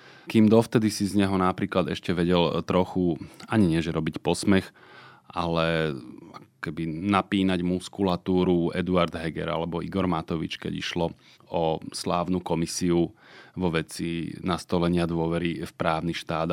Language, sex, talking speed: Slovak, male, 125 wpm